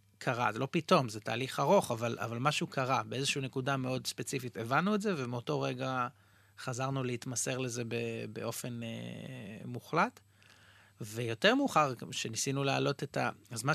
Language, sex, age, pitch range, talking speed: Hebrew, male, 30-49, 120-150 Hz, 150 wpm